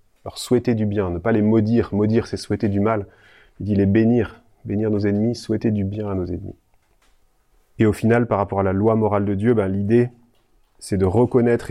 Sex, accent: male, French